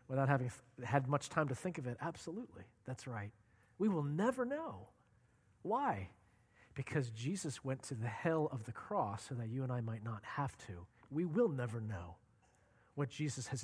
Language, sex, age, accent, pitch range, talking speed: English, male, 40-59, American, 115-150 Hz, 190 wpm